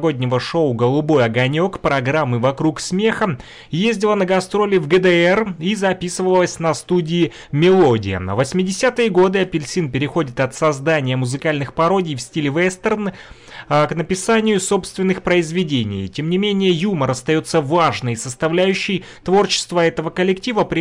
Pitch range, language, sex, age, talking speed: 135-180 Hz, Russian, male, 30-49, 125 wpm